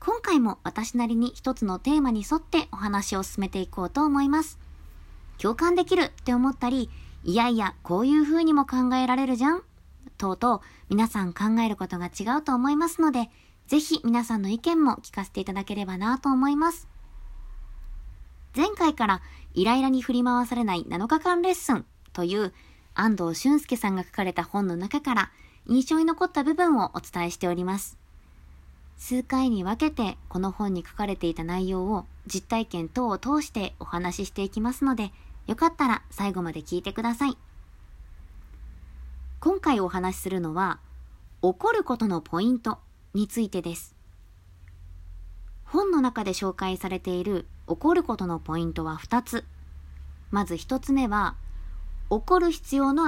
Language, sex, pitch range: Japanese, male, 170-265 Hz